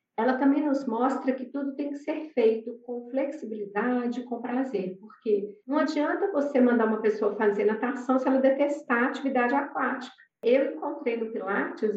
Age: 40-59